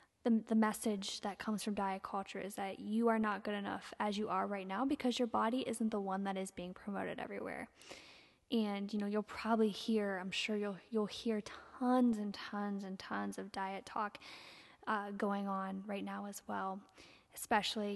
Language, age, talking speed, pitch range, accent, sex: English, 10-29, 195 wpm, 200-230 Hz, American, female